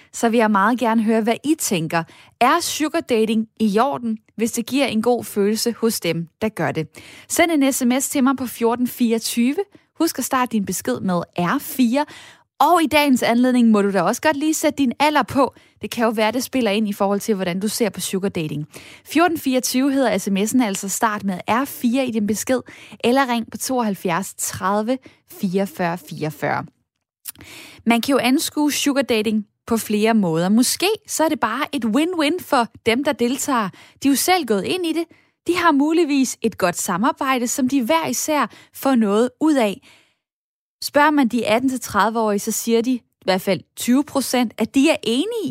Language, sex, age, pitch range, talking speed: Danish, female, 10-29, 215-280 Hz, 185 wpm